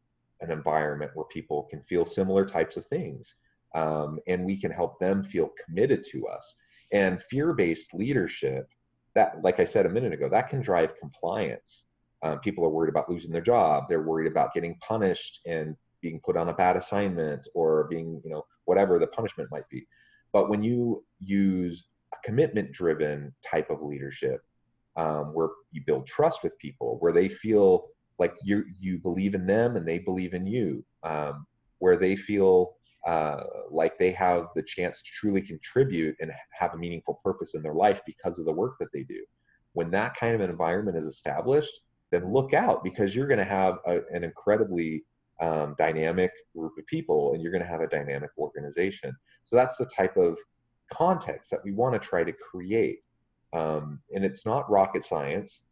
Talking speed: 185 wpm